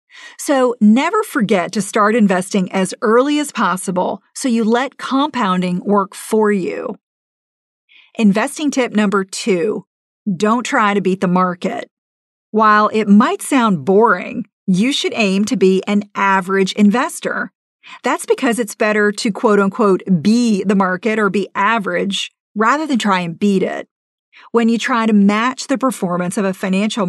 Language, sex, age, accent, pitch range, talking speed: English, female, 40-59, American, 195-240 Hz, 155 wpm